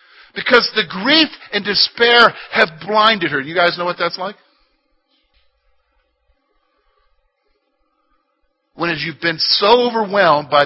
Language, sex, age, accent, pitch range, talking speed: English, male, 50-69, American, 170-235 Hz, 115 wpm